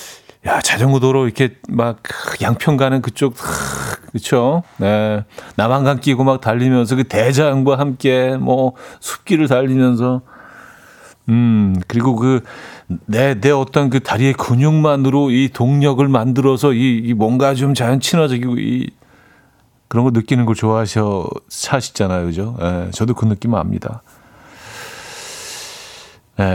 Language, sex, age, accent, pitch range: Korean, male, 40-59, native, 115-145 Hz